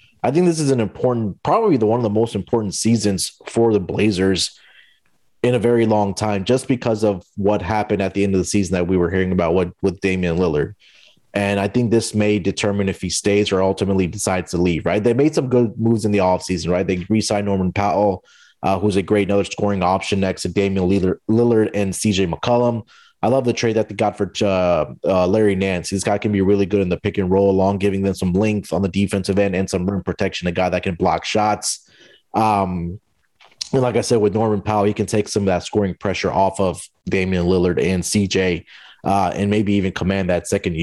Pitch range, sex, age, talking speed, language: 95-110 Hz, male, 30-49, 225 wpm, English